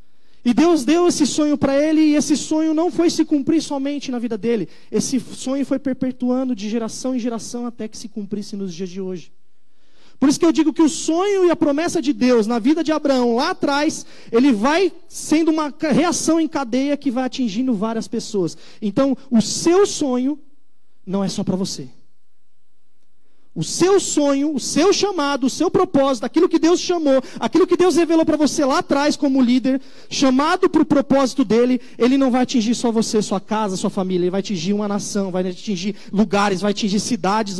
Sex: male